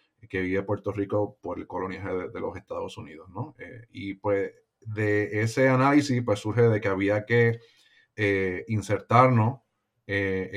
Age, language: 30-49, Spanish